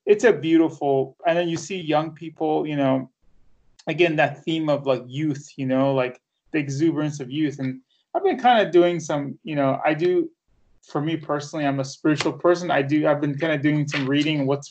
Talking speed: 210 wpm